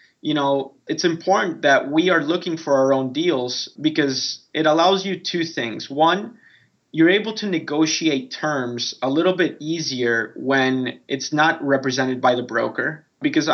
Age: 20-39